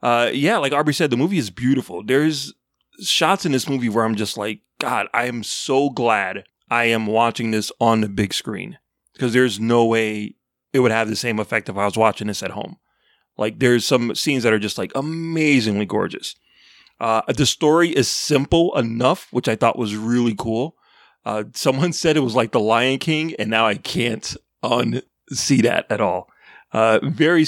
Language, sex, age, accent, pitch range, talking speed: English, male, 30-49, American, 110-145 Hz, 195 wpm